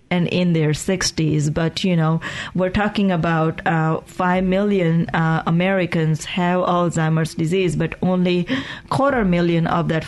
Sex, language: female, English